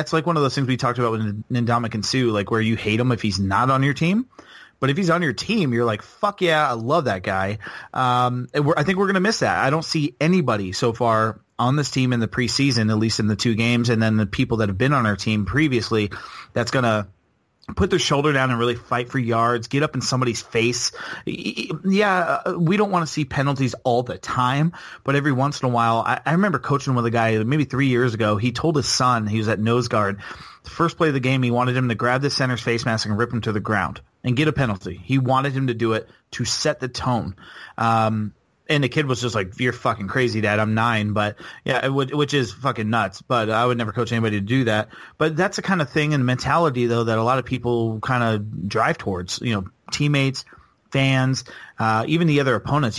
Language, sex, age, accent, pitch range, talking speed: English, male, 30-49, American, 110-140 Hz, 250 wpm